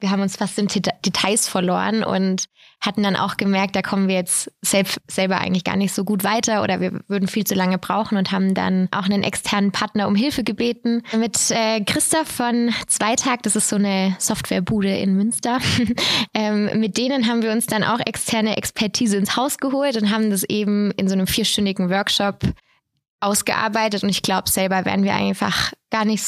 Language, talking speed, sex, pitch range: German, 195 wpm, female, 195-220 Hz